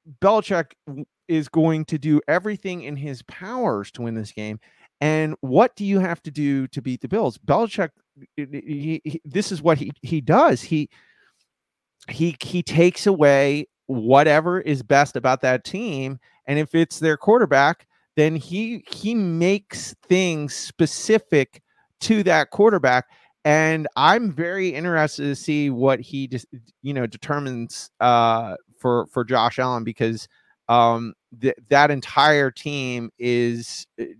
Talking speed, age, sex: 140 wpm, 30-49, male